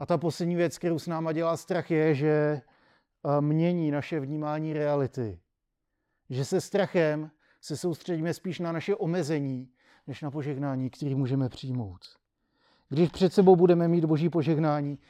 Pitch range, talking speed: 145-165 Hz, 145 wpm